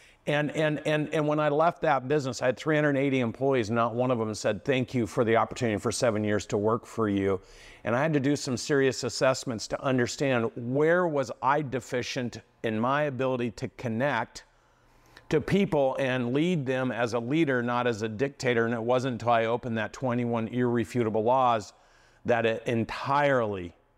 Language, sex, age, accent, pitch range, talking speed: English, male, 50-69, American, 115-145 Hz, 185 wpm